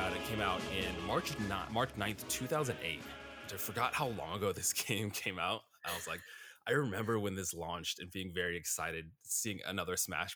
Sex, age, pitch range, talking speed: male, 20-39, 85-105 Hz, 185 wpm